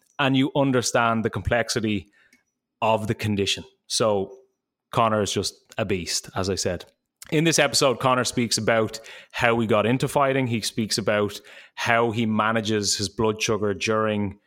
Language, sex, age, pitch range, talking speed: English, male, 20-39, 105-125 Hz, 160 wpm